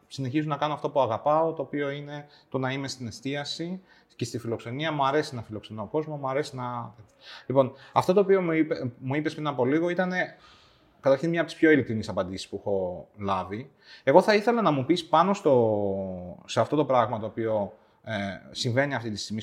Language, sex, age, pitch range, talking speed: Greek, male, 30-49, 110-145 Hz, 190 wpm